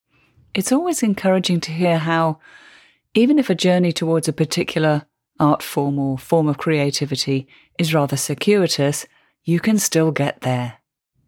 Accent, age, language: British, 40-59, English